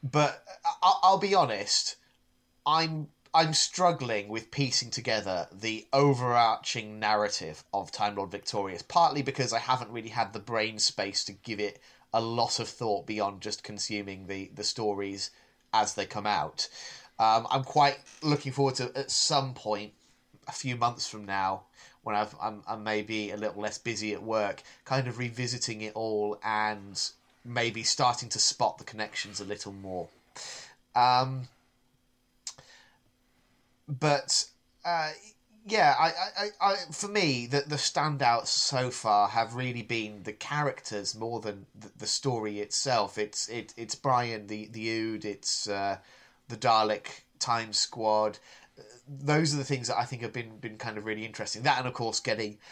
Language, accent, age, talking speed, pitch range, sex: English, British, 30-49, 160 wpm, 105-130 Hz, male